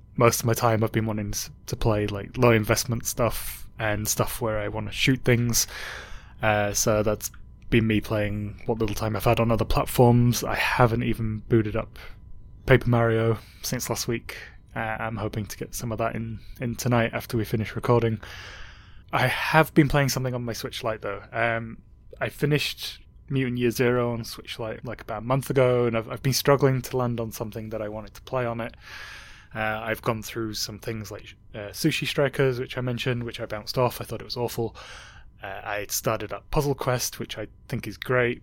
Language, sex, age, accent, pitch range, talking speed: English, male, 20-39, British, 105-120 Hz, 205 wpm